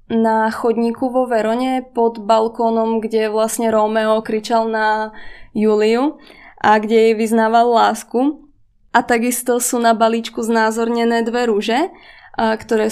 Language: Czech